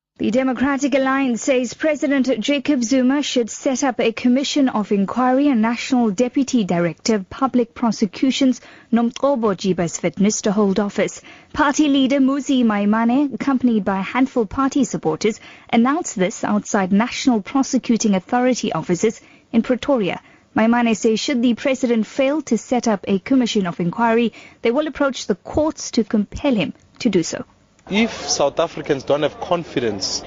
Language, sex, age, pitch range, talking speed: English, female, 30-49, 160-250 Hz, 155 wpm